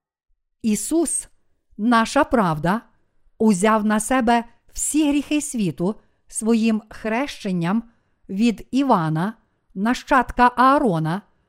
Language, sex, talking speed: Ukrainian, female, 80 wpm